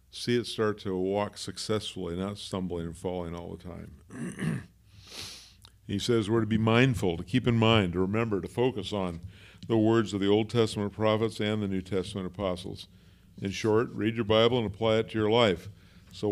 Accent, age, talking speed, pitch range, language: American, 50-69, 190 wpm, 95-110 Hz, English